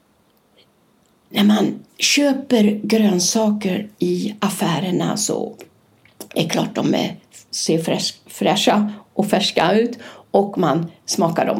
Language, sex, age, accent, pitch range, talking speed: Swedish, female, 60-79, native, 195-250 Hz, 100 wpm